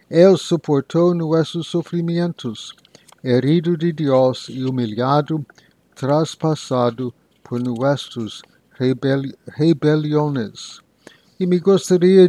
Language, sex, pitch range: English, male, 130-160 Hz